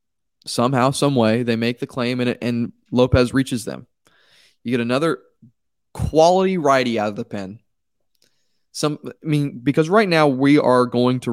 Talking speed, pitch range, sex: 170 wpm, 115-135 Hz, male